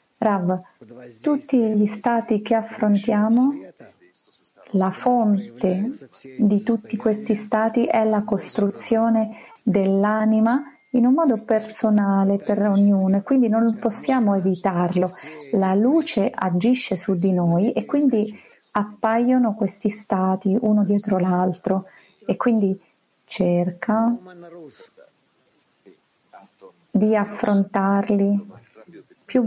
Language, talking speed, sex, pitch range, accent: Italian, 95 wpm, female, 190-230 Hz, native